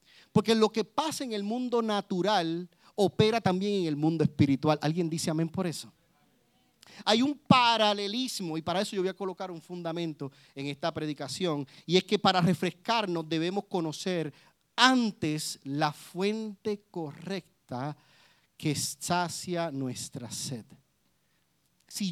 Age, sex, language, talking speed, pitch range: 40-59, male, Spanish, 135 wpm, 150-200 Hz